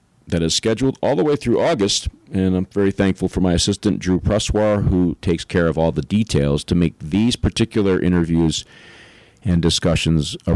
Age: 40-59